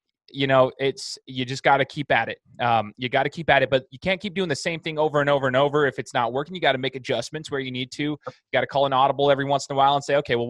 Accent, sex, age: American, male, 20-39